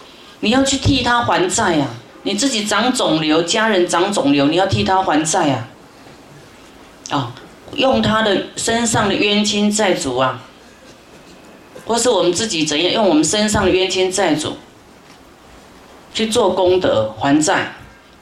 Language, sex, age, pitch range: Chinese, female, 30-49, 165-220 Hz